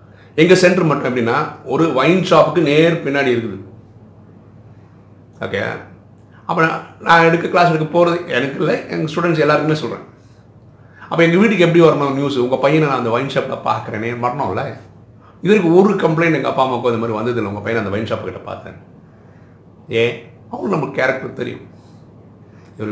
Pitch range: 105-155 Hz